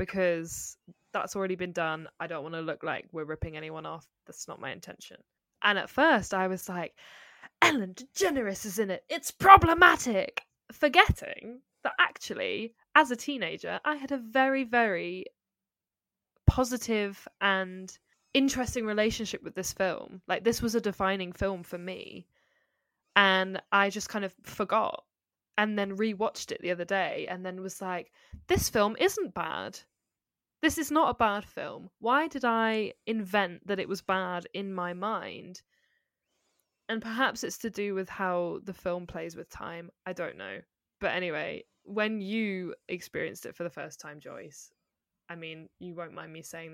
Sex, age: female, 10-29